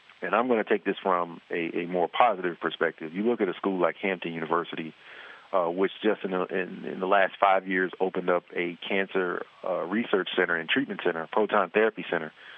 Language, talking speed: English, 210 wpm